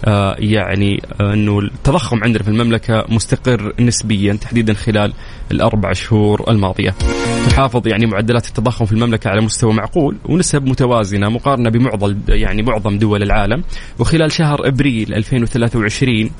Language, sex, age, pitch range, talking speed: Arabic, male, 20-39, 110-135 Hz, 120 wpm